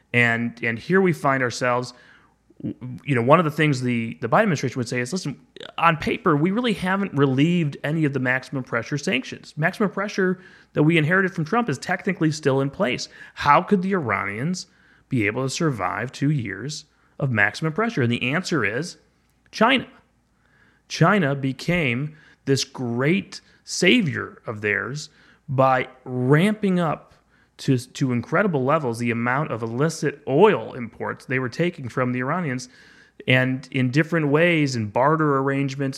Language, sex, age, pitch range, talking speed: English, male, 30-49, 120-155 Hz, 160 wpm